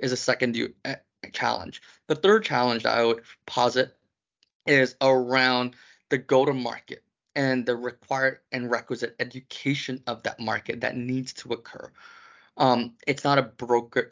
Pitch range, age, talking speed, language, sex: 115-140 Hz, 20-39, 150 wpm, English, male